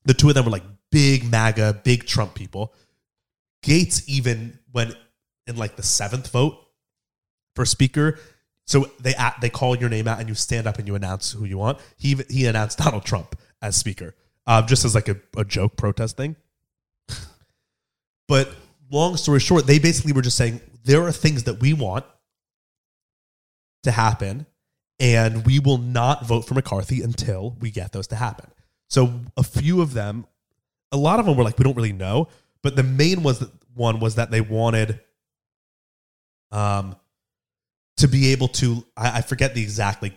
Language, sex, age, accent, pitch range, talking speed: English, male, 30-49, American, 110-135 Hz, 180 wpm